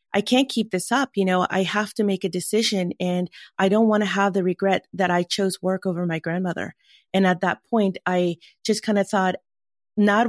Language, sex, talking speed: English, female, 220 wpm